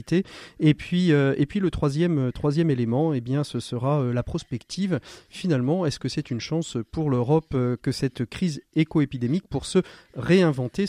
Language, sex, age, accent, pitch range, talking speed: French, male, 40-59, French, 125-155 Hz, 175 wpm